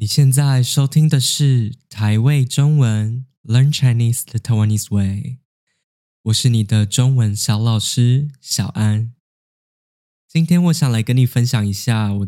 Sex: male